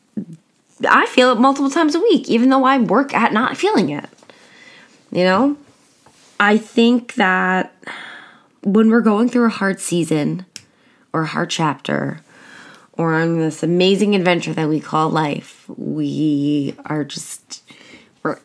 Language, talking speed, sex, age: English, 145 wpm, female, 20-39